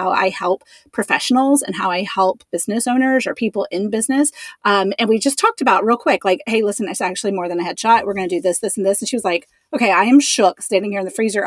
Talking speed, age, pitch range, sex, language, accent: 270 wpm, 30-49, 195-250 Hz, female, English, American